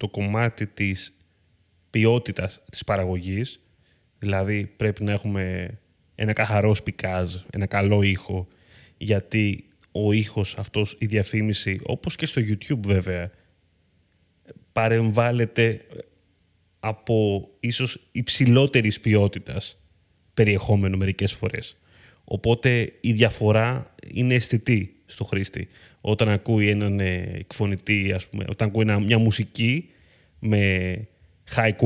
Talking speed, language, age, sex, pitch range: 100 wpm, Greek, 20-39, male, 95-125 Hz